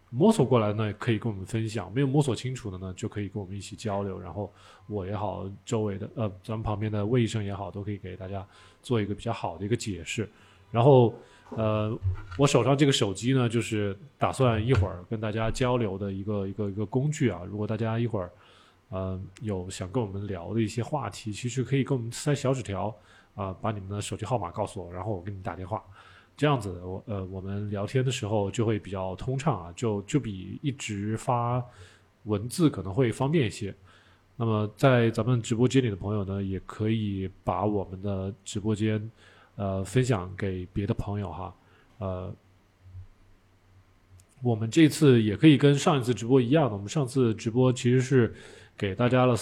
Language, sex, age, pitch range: Chinese, male, 20-39, 100-120 Hz